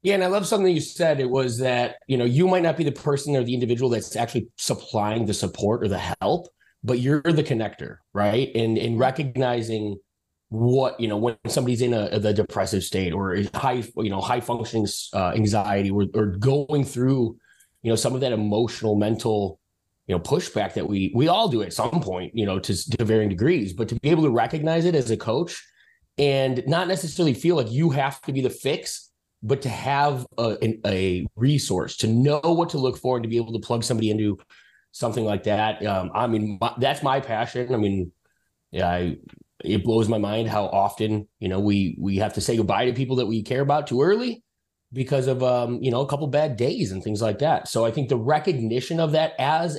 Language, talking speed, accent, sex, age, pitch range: English, 220 wpm, American, male, 30-49, 105-135 Hz